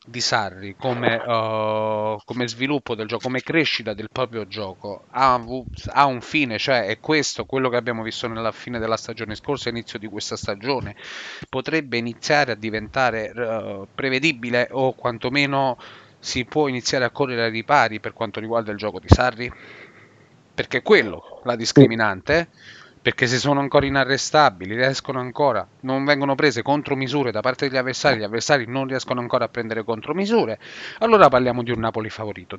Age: 30-49